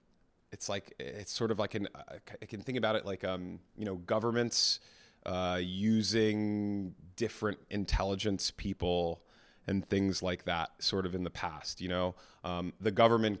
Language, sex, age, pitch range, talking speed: English, male, 30-49, 95-110 Hz, 160 wpm